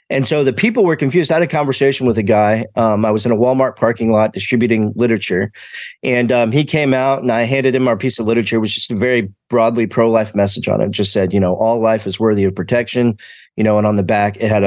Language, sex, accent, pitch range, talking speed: English, male, American, 110-135 Hz, 260 wpm